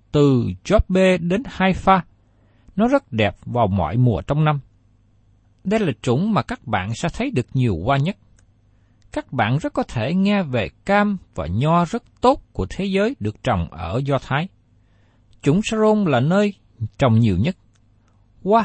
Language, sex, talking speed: Vietnamese, male, 165 wpm